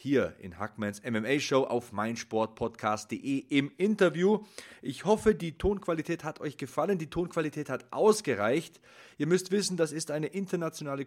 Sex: male